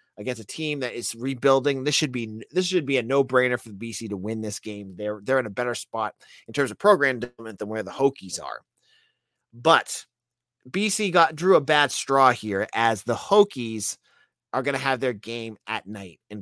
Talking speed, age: 210 wpm, 30-49